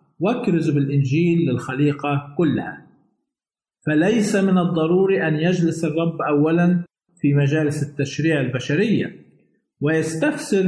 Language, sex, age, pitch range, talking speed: Arabic, male, 50-69, 155-190 Hz, 90 wpm